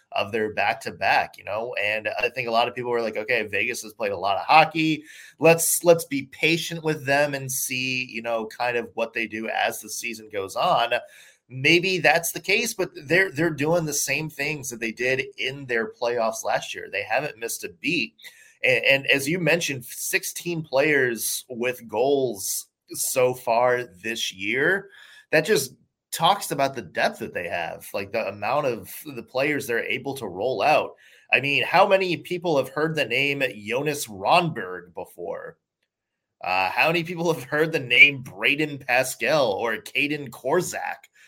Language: English